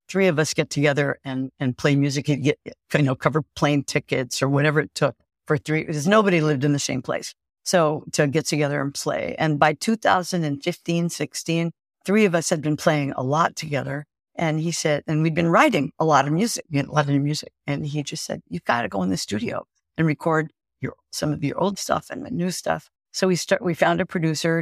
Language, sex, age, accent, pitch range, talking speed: English, female, 50-69, American, 145-170 Hz, 230 wpm